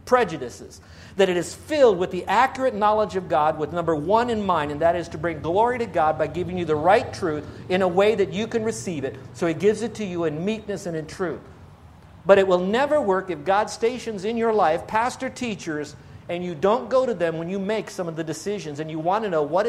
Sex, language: male, English